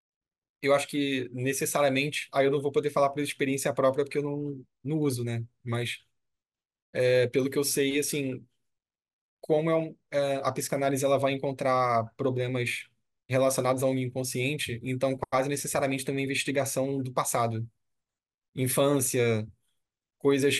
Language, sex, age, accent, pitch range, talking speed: Portuguese, male, 20-39, Brazilian, 130-150 Hz, 145 wpm